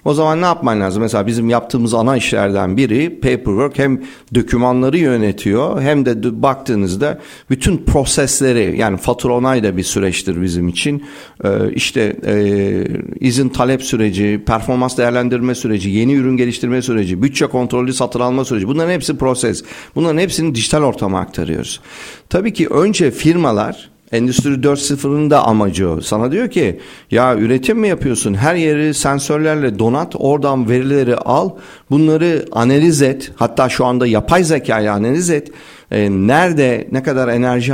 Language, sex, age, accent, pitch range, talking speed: Turkish, male, 50-69, native, 115-145 Hz, 145 wpm